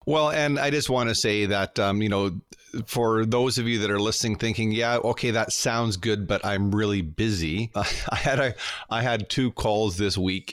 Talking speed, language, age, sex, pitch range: 215 wpm, English, 40-59, male, 95-115 Hz